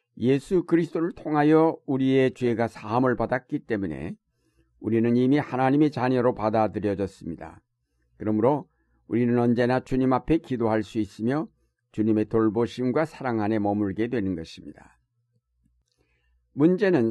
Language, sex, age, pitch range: Korean, male, 60-79, 110-140 Hz